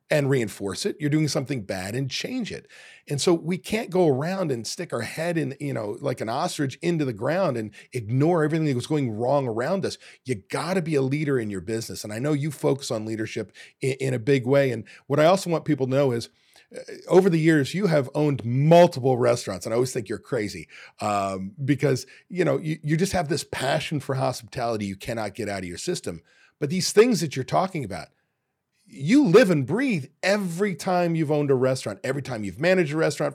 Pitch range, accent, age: 115-155 Hz, American, 40-59